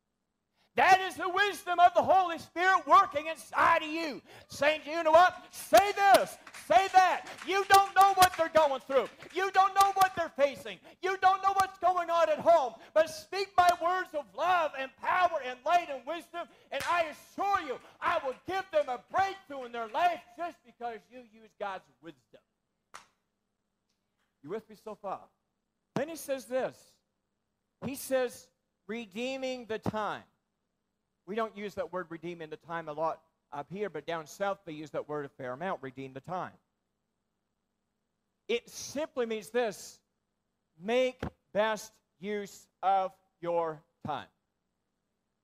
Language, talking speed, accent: English, 160 wpm, American